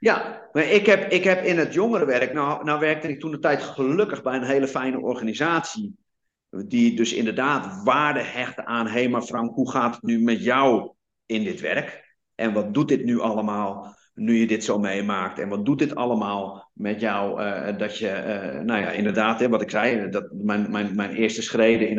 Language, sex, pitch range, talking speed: Dutch, male, 115-150 Hz, 205 wpm